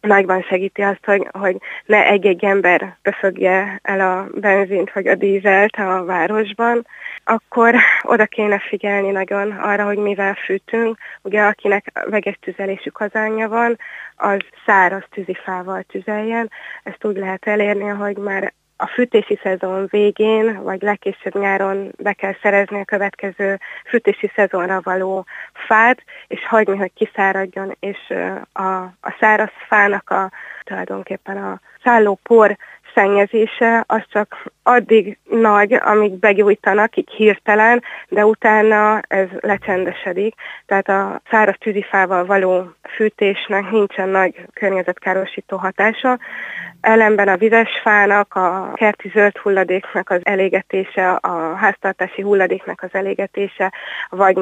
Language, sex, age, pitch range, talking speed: Hungarian, female, 20-39, 190-210 Hz, 120 wpm